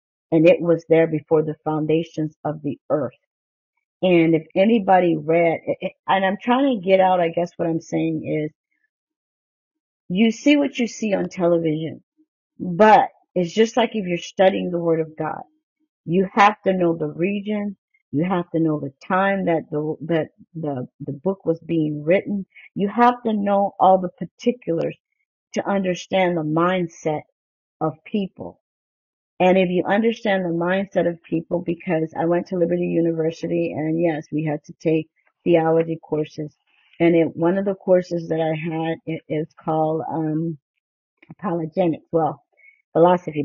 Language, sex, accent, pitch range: English, female, American, 160-190 Hz